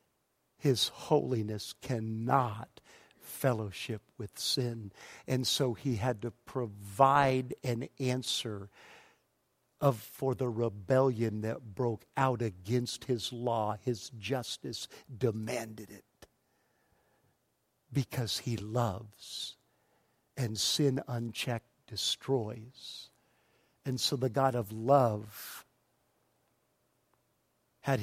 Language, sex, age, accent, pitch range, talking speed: English, male, 50-69, American, 110-140 Hz, 90 wpm